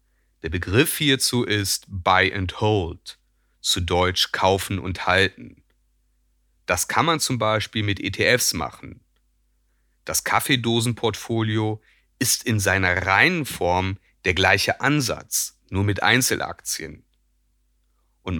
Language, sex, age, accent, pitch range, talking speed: German, male, 40-59, German, 90-115 Hz, 110 wpm